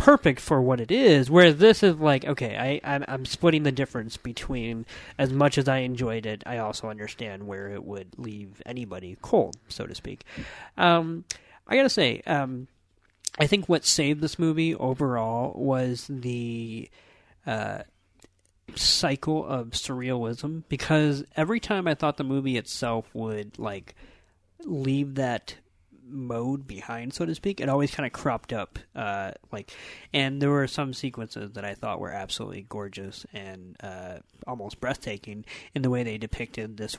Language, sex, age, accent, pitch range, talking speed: English, male, 30-49, American, 110-145 Hz, 160 wpm